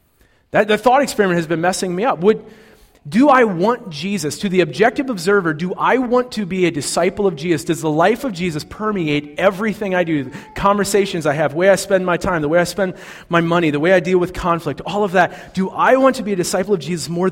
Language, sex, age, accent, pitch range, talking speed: English, male, 30-49, American, 155-200 Hz, 245 wpm